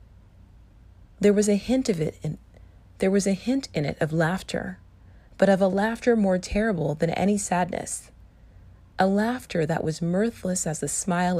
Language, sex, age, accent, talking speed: English, female, 30-49, American, 170 wpm